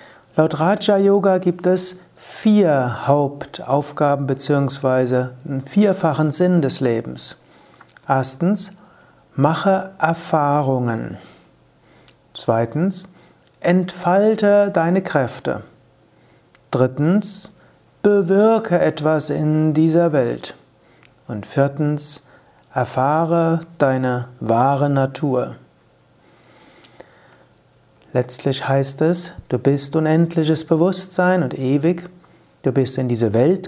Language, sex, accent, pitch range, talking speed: German, male, German, 135-175 Hz, 80 wpm